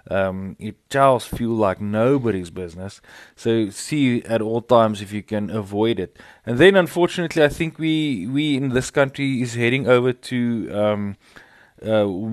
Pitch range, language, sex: 105-135 Hz, English, male